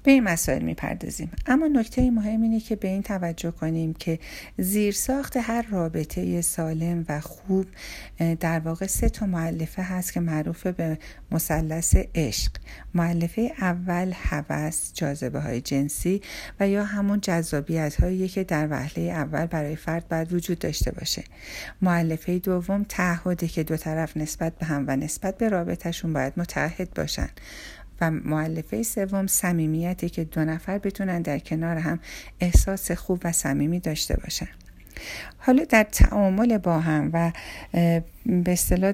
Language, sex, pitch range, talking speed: Persian, female, 160-195 Hz, 145 wpm